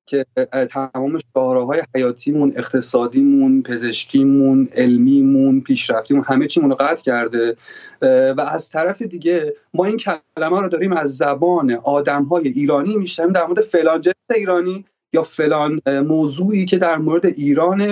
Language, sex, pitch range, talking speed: Persian, male, 135-195 Hz, 135 wpm